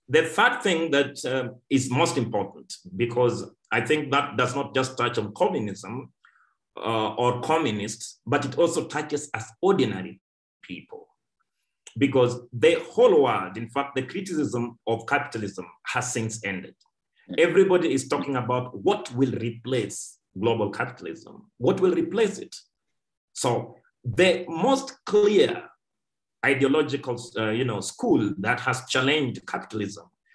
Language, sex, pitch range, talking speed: English, male, 115-155 Hz, 130 wpm